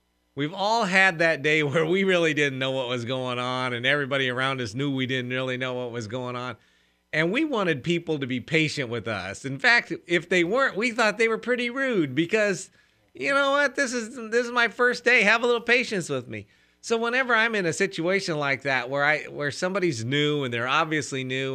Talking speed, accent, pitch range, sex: 225 wpm, American, 125-170 Hz, male